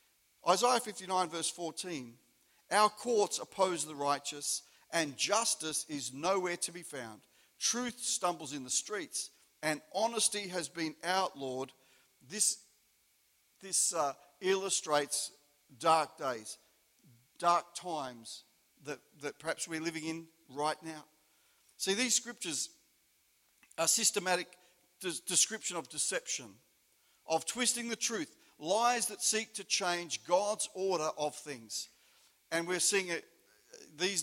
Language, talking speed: English, 120 wpm